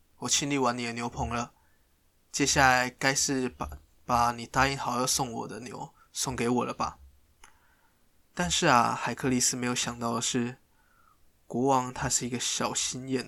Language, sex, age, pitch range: Chinese, male, 20-39, 120-130 Hz